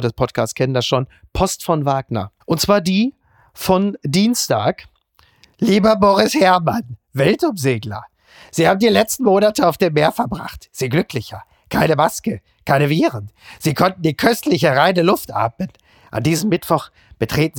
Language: German